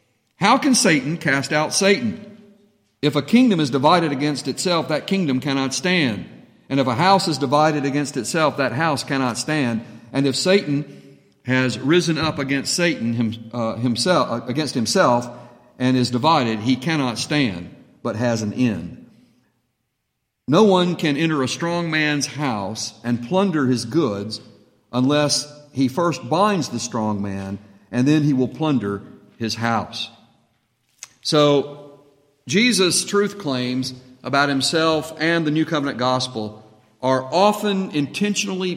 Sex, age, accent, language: male, 50-69, American, English